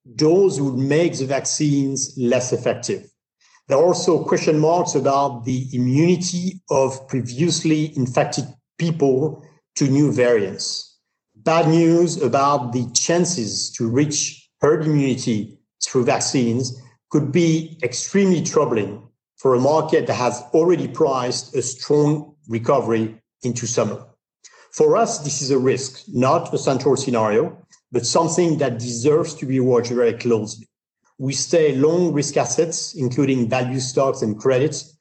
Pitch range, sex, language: 120-155 Hz, male, Italian